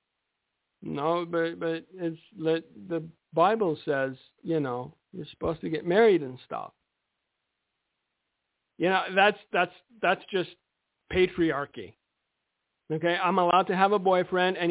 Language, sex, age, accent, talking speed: English, male, 50-69, American, 125 wpm